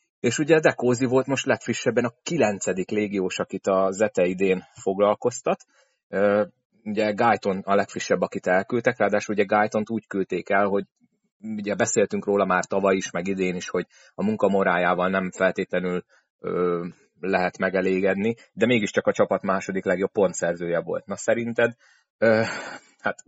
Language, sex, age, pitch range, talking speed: Hungarian, male, 30-49, 90-110 Hz, 145 wpm